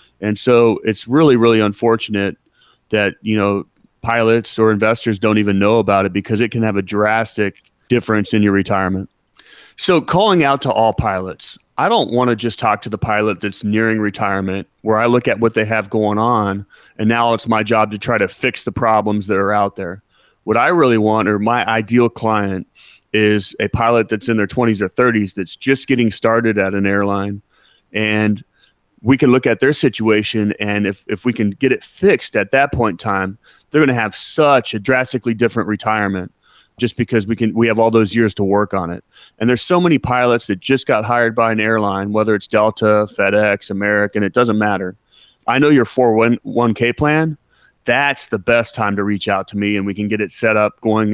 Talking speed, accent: 205 wpm, American